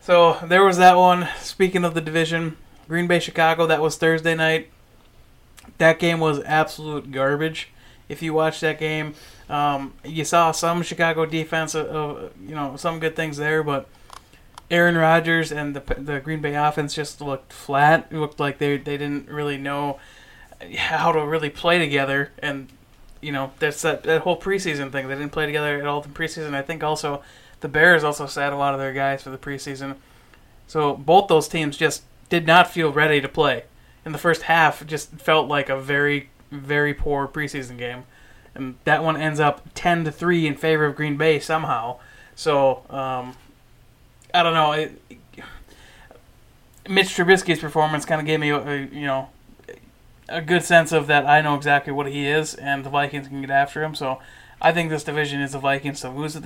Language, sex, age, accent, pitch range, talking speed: English, male, 20-39, American, 140-160 Hz, 190 wpm